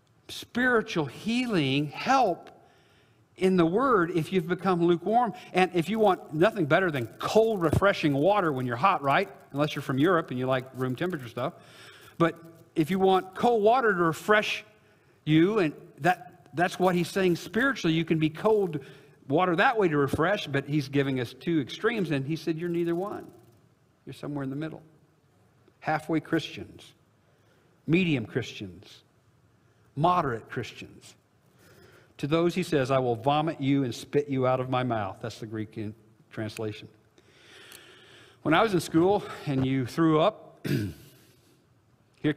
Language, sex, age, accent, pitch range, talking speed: English, male, 50-69, American, 130-170 Hz, 160 wpm